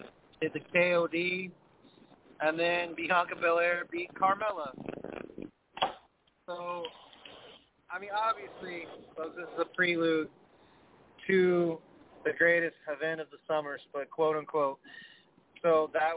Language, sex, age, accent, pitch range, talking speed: English, male, 30-49, American, 140-165 Hz, 110 wpm